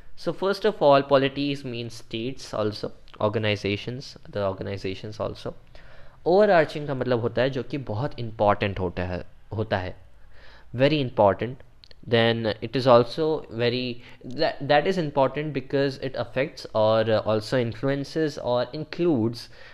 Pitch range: 105-135 Hz